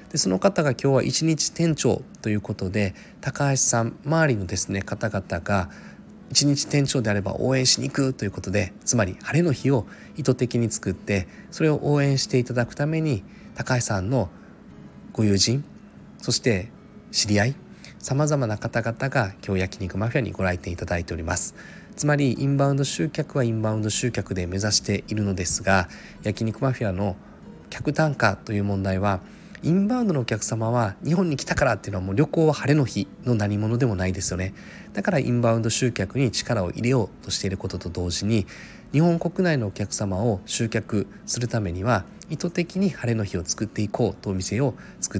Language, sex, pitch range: Japanese, male, 100-140 Hz